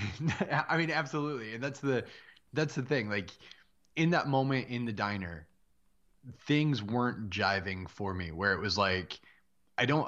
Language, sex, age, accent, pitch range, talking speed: English, male, 20-39, American, 95-125 Hz, 160 wpm